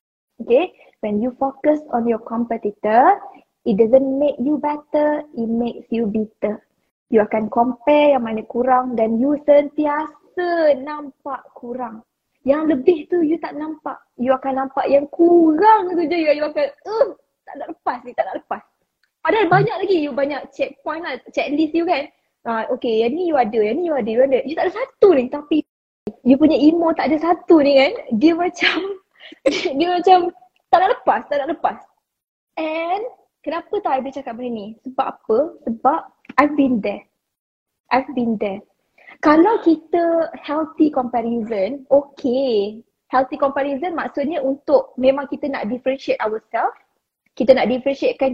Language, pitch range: Malay, 250-325 Hz